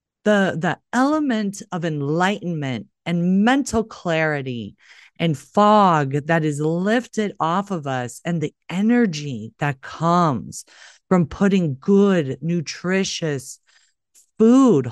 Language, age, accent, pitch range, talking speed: English, 40-59, American, 140-180 Hz, 105 wpm